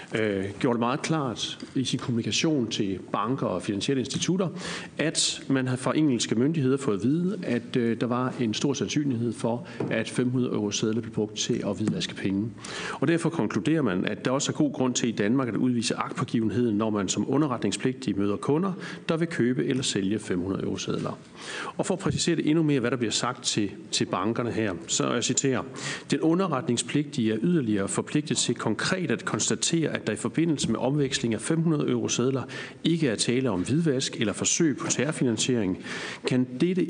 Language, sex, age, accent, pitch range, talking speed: Danish, male, 40-59, native, 110-150 Hz, 190 wpm